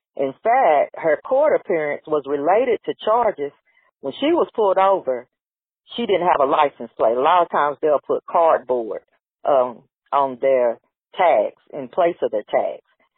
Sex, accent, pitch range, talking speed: female, American, 150-200 Hz, 165 wpm